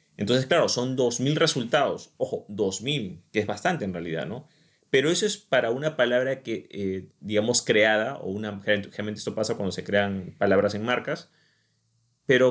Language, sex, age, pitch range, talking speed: Spanish, male, 30-49, 105-145 Hz, 170 wpm